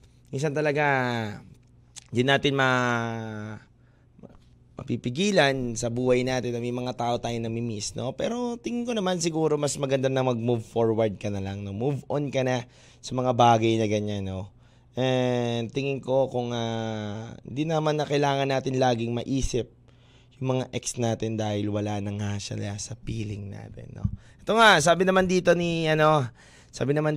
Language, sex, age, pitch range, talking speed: Filipino, male, 20-39, 120-170 Hz, 160 wpm